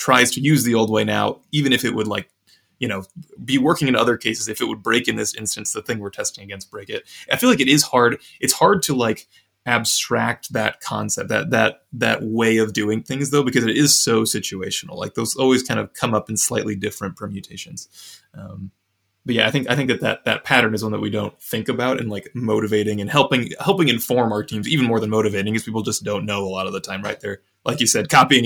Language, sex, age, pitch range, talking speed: English, male, 20-39, 105-130 Hz, 245 wpm